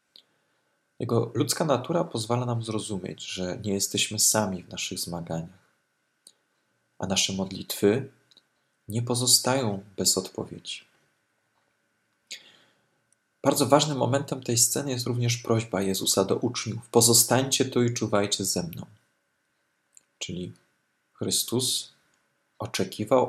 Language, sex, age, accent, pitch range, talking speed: Polish, male, 40-59, native, 75-110 Hz, 105 wpm